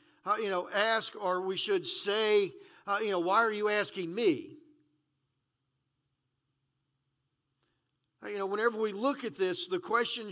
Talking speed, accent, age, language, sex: 145 wpm, American, 50-69, English, male